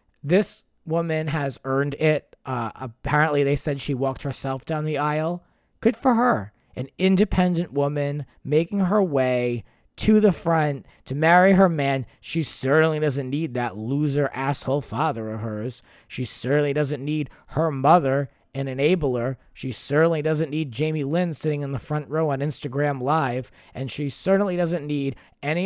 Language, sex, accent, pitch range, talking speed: English, male, American, 125-165 Hz, 160 wpm